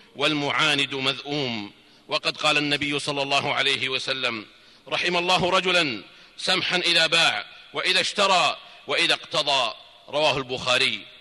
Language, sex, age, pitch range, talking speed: Arabic, male, 50-69, 140-190 Hz, 110 wpm